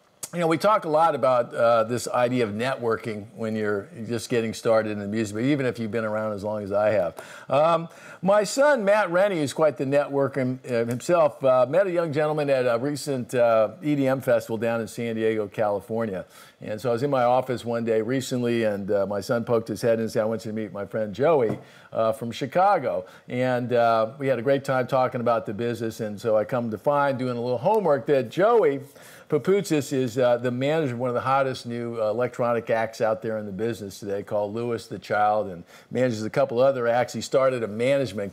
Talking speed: 225 wpm